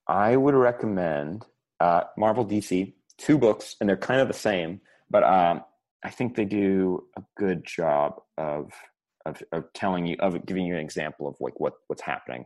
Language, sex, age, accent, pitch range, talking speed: English, male, 30-49, American, 90-120 Hz, 185 wpm